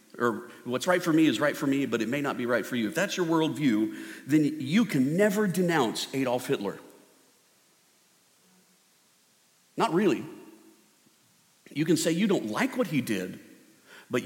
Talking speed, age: 170 wpm, 50-69